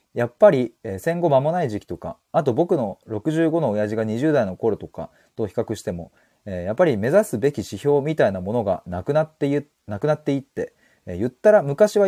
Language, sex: Japanese, male